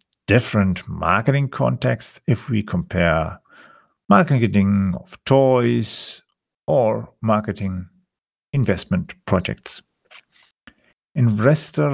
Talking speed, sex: 70 wpm, male